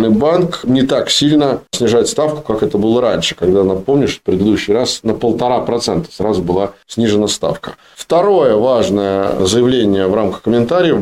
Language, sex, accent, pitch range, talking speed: Russian, male, native, 105-125 Hz, 150 wpm